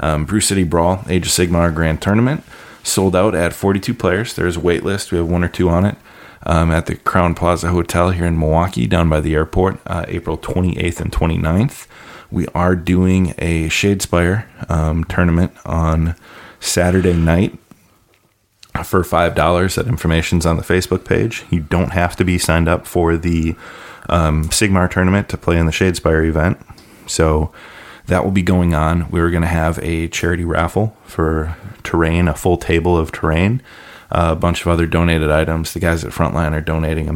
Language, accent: English, American